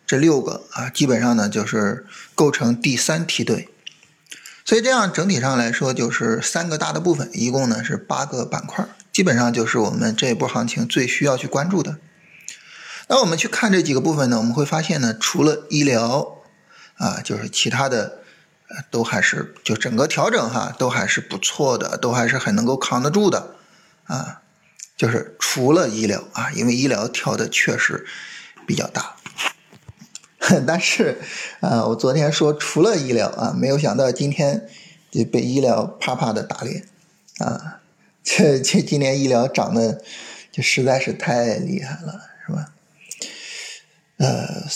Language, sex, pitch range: Chinese, male, 130-185 Hz